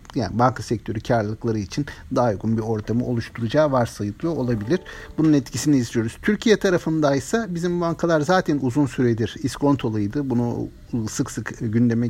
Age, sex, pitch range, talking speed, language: 50-69, male, 115-150 Hz, 140 wpm, Turkish